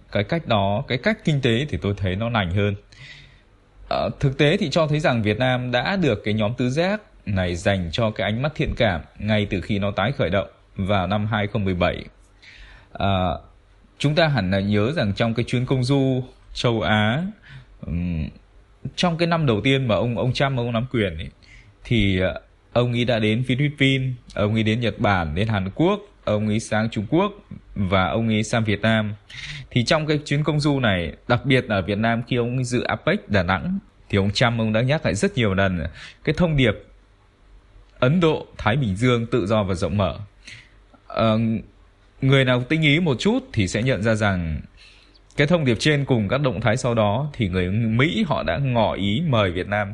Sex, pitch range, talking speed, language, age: male, 100-130 Hz, 205 wpm, Vietnamese, 20-39